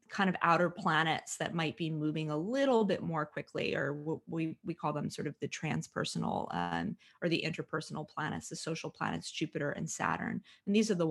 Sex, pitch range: female, 155-200 Hz